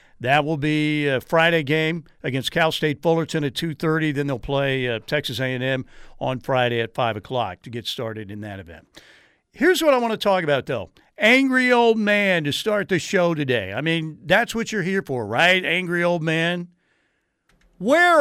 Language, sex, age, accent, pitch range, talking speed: English, male, 50-69, American, 135-170 Hz, 190 wpm